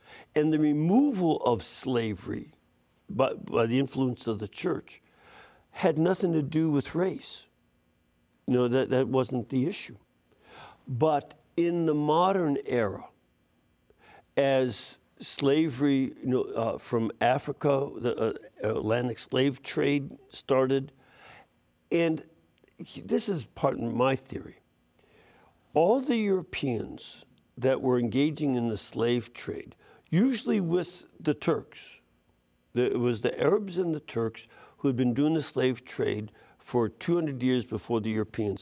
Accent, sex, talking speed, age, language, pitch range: American, male, 125 wpm, 60-79, English, 115-165 Hz